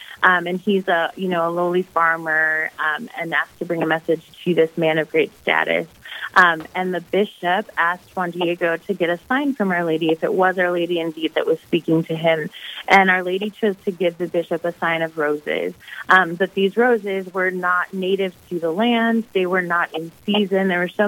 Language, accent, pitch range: English, American, 165-195 Hz